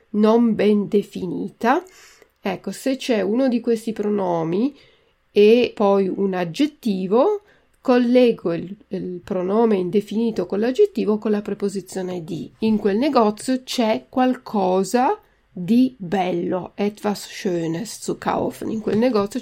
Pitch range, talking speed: 190-235 Hz, 120 wpm